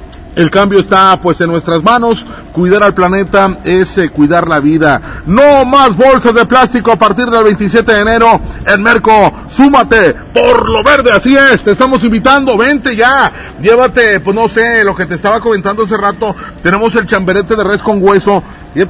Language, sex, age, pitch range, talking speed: Spanish, male, 40-59, 175-230 Hz, 180 wpm